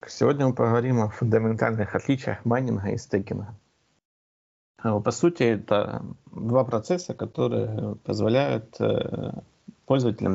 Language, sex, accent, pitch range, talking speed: Russian, male, native, 105-130 Hz, 100 wpm